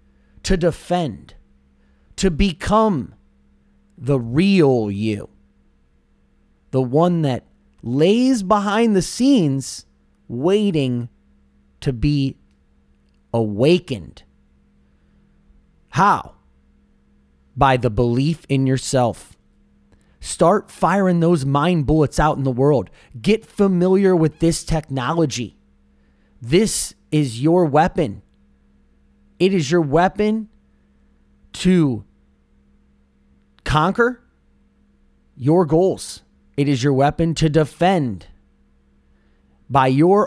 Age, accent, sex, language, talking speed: 30-49, American, male, English, 85 wpm